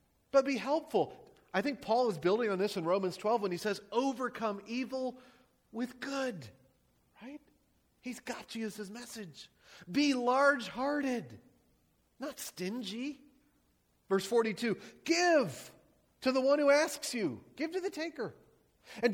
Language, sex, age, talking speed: English, male, 40-59, 140 wpm